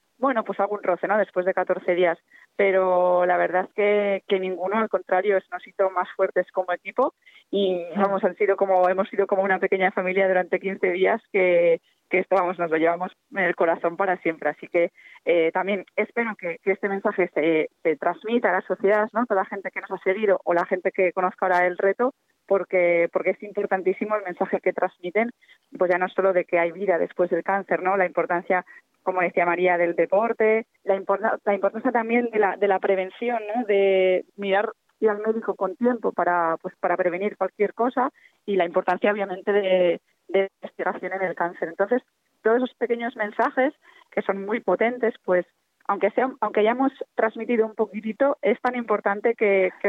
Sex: female